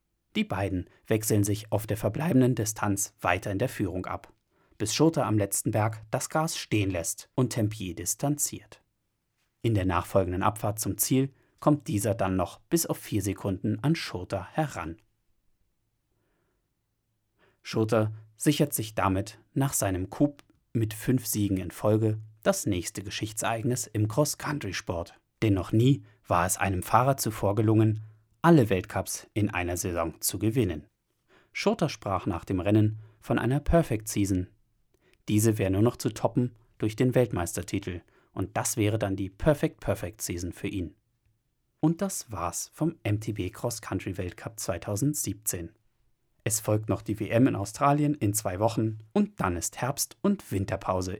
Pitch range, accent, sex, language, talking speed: 100-125 Hz, German, male, German, 150 wpm